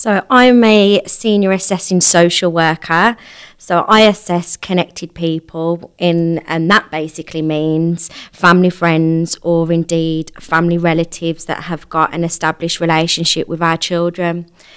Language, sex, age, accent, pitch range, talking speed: English, female, 20-39, British, 165-200 Hz, 125 wpm